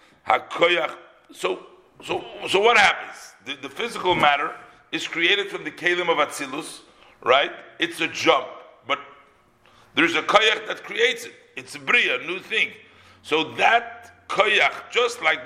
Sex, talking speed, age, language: male, 150 wpm, 60-79, English